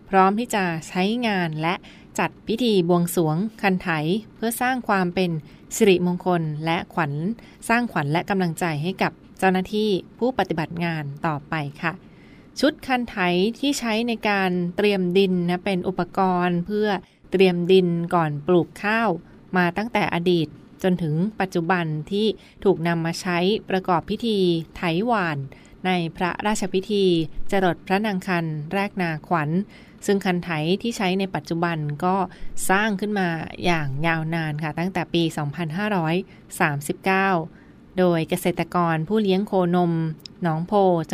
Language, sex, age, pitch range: Thai, female, 20-39, 170-195 Hz